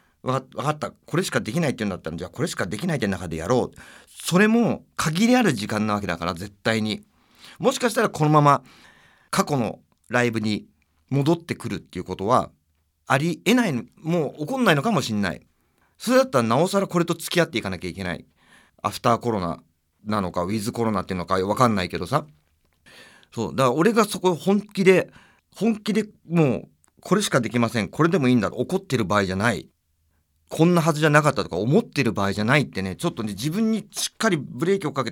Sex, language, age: male, Japanese, 40-59